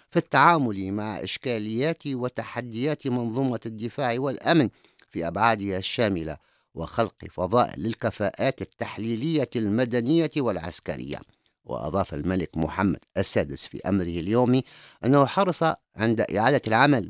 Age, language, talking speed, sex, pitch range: 50-69, English, 100 wpm, male, 105-145 Hz